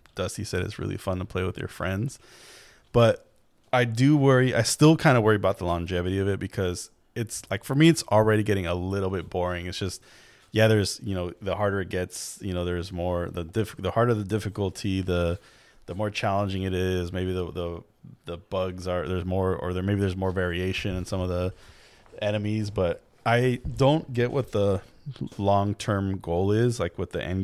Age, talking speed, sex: 20-39, 205 wpm, male